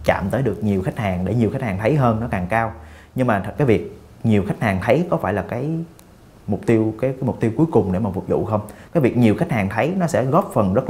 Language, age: Vietnamese, 20-39